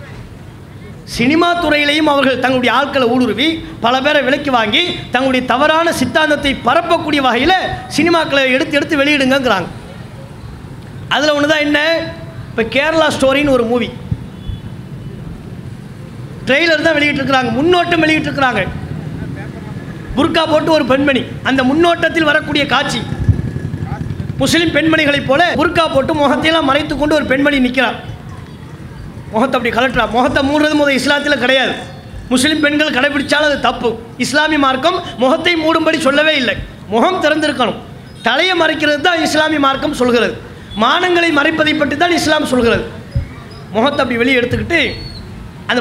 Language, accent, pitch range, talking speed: English, Indian, 245-305 Hz, 95 wpm